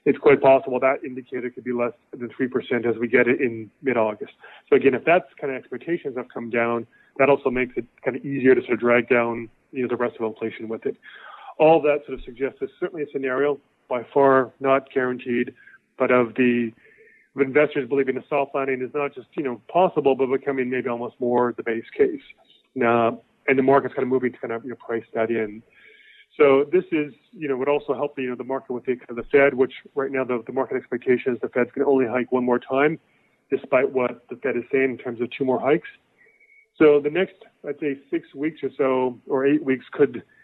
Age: 30-49